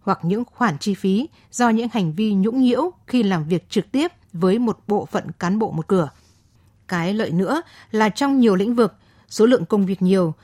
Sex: female